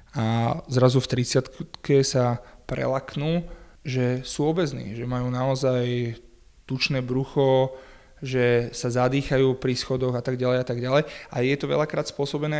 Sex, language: male, Slovak